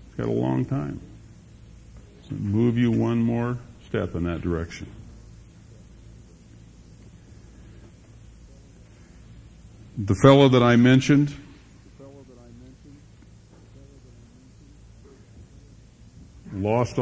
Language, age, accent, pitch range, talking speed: English, 60-79, American, 95-115 Hz, 60 wpm